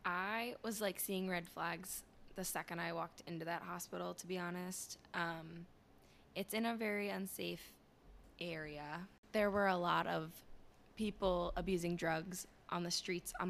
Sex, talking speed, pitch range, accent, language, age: female, 155 wpm, 160-195 Hz, American, English, 10-29